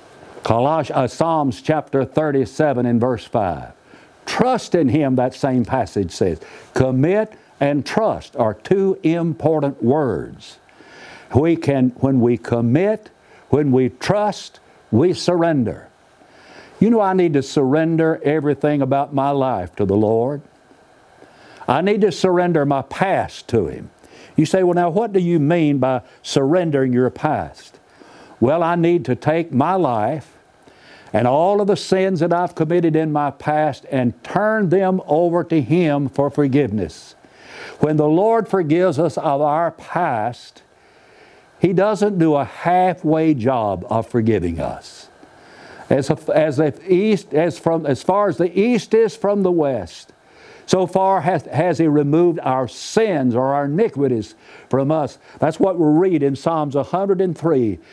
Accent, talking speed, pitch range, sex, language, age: American, 150 wpm, 130-175 Hz, male, English, 60-79